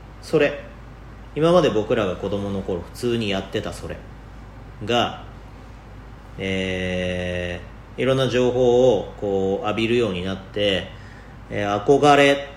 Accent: native